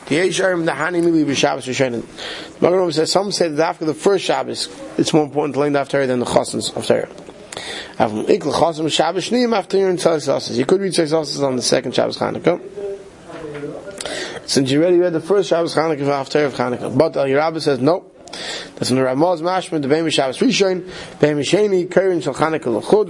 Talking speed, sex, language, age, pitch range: 125 wpm, male, English, 30-49, 140-175 Hz